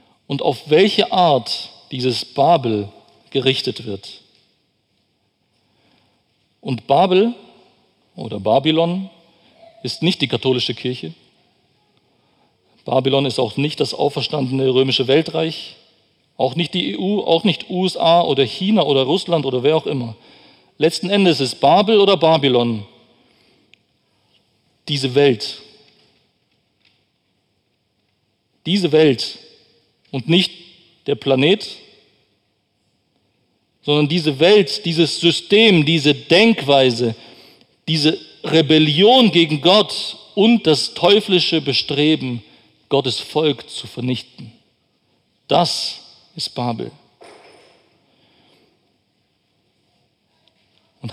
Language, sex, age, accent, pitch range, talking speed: German, male, 50-69, German, 125-170 Hz, 90 wpm